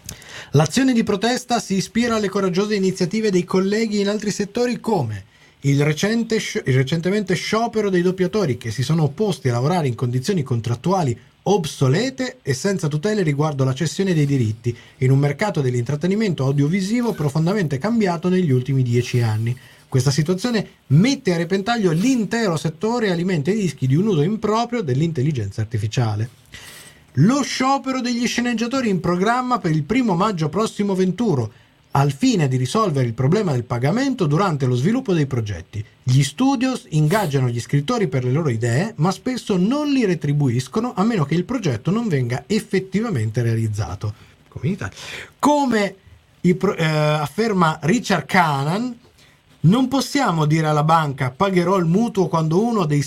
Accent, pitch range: native, 135-210 Hz